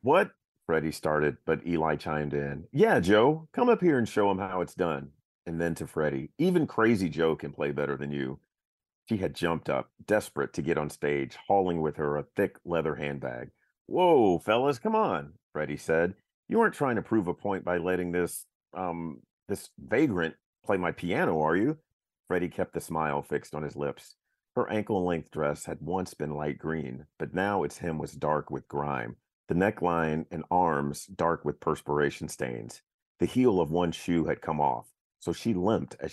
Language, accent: English, American